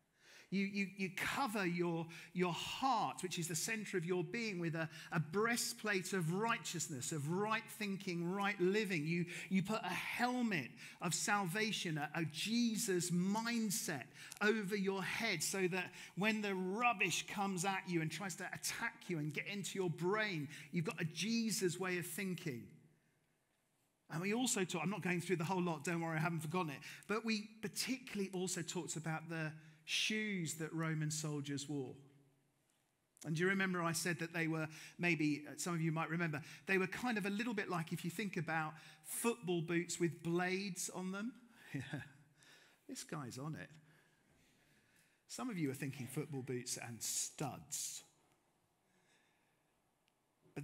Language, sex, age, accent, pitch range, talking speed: English, male, 40-59, British, 155-195 Hz, 165 wpm